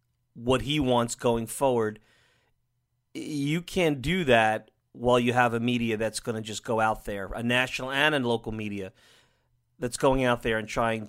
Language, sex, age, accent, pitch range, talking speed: English, male, 30-49, American, 110-130 Hz, 180 wpm